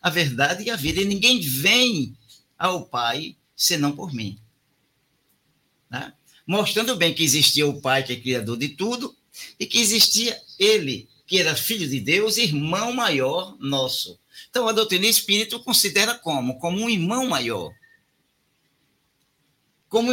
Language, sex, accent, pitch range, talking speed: Portuguese, male, Brazilian, 130-215 Hz, 145 wpm